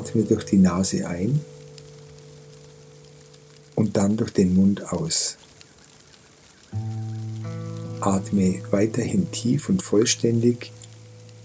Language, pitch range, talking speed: German, 95-115 Hz, 85 wpm